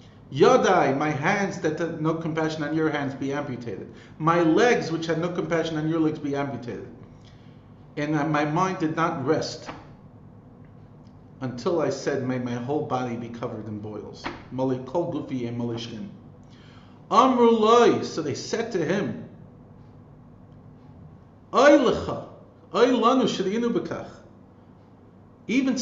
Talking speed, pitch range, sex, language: 110 wpm, 120-160 Hz, male, English